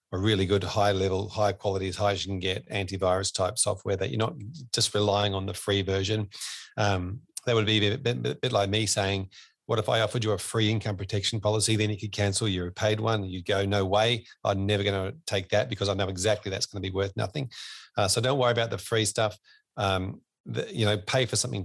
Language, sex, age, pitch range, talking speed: English, male, 40-59, 95-110 Hz, 245 wpm